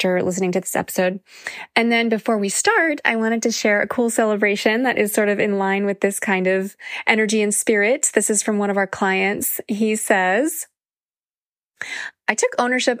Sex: female